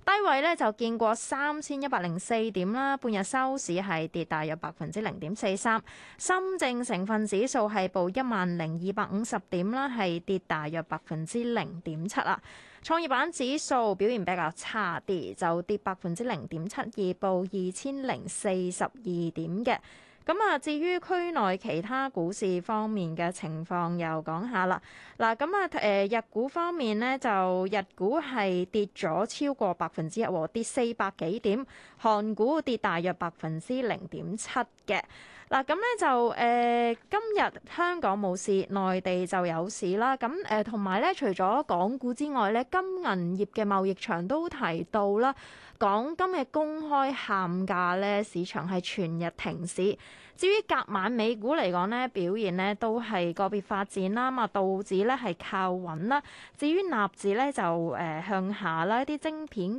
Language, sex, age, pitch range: Chinese, female, 20-39, 185-255 Hz